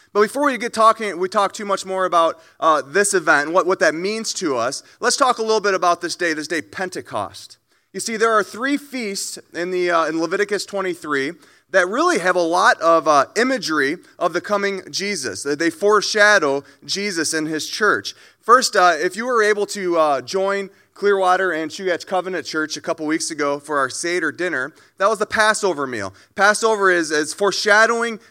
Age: 30-49